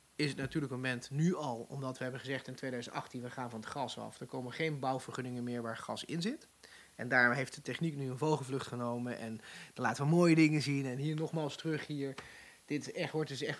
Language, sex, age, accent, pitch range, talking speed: English, male, 30-49, Dutch, 130-155 Hz, 245 wpm